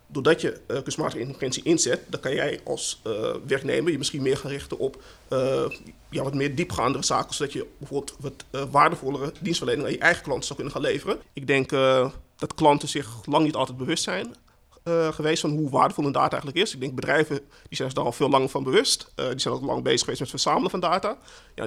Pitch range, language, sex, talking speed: 130-155 Hz, Dutch, male, 230 wpm